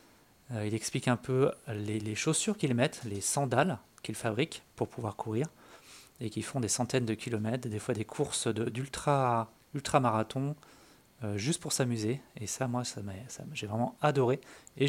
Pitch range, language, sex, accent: 115-145 Hz, French, male, French